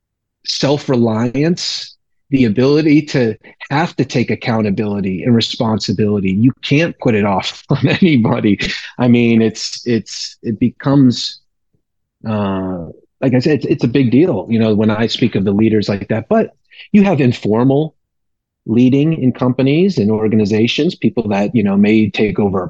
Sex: male